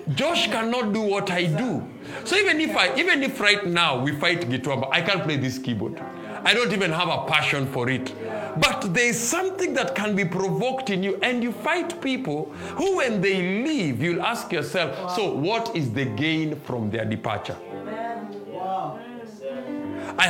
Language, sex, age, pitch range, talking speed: English, male, 50-69, 135-220 Hz, 175 wpm